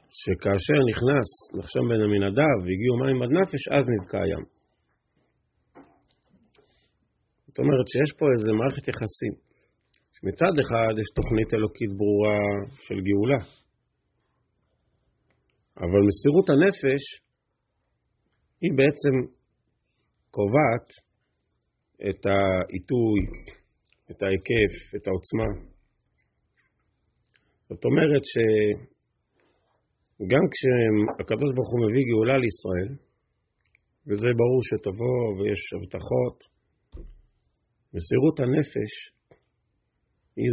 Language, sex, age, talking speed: Hebrew, male, 40-59, 80 wpm